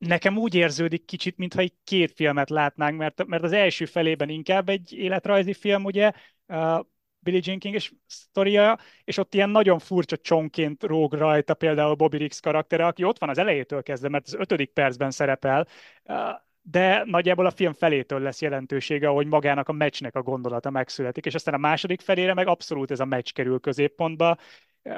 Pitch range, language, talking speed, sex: 140-175 Hz, Hungarian, 175 wpm, male